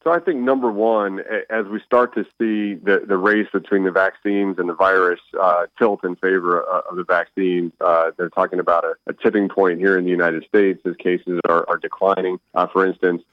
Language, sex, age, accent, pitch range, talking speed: English, male, 40-59, American, 90-105 Hz, 215 wpm